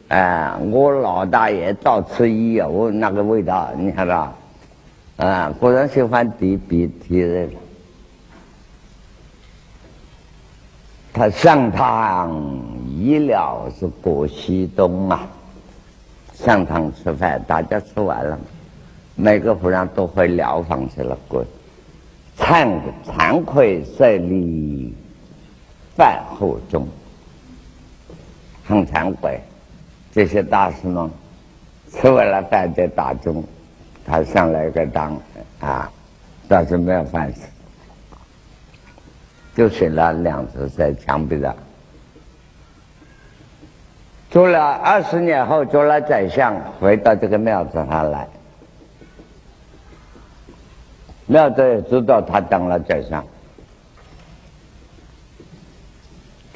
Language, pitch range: Chinese, 80-120 Hz